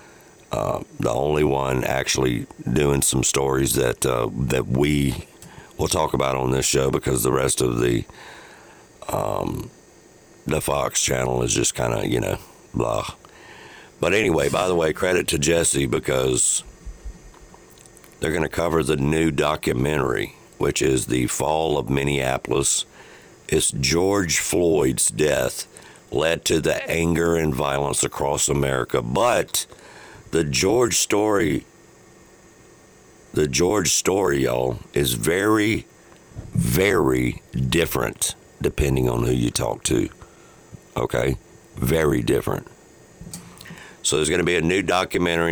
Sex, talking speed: male, 130 wpm